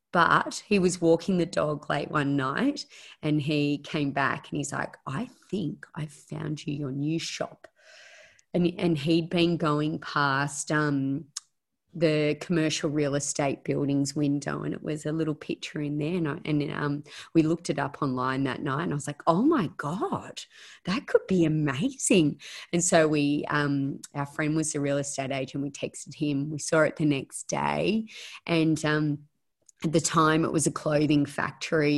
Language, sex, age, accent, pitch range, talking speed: English, female, 30-49, Australian, 145-165 Hz, 180 wpm